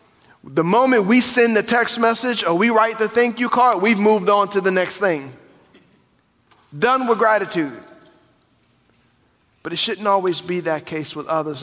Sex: male